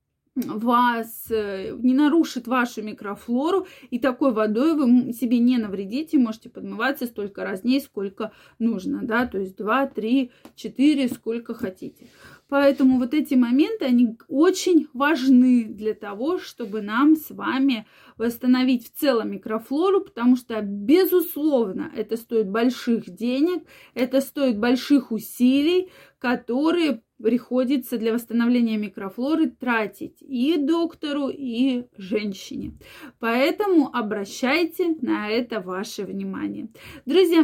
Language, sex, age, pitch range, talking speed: Russian, female, 20-39, 230-295 Hz, 115 wpm